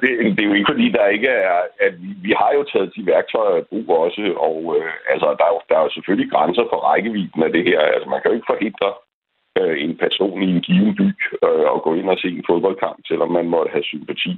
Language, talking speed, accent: Danish, 260 wpm, native